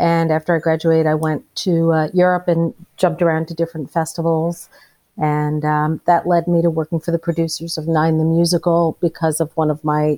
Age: 50-69